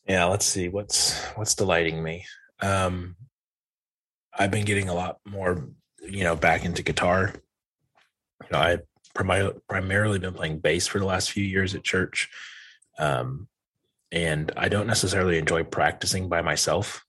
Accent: American